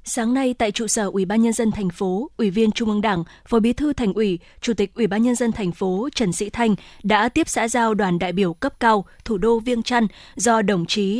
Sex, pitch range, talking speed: female, 200-245 Hz, 255 wpm